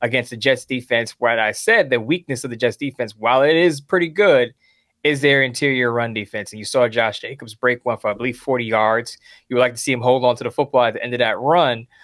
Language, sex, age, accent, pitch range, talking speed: English, male, 20-39, American, 125-160 Hz, 250 wpm